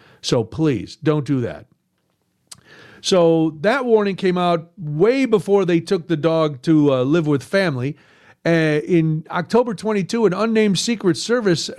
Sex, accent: male, American